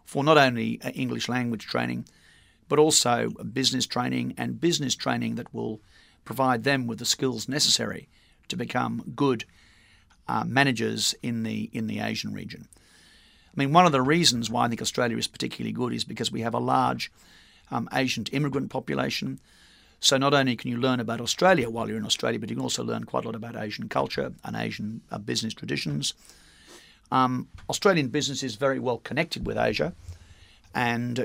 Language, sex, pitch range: Japanese, male, 110-135 Hz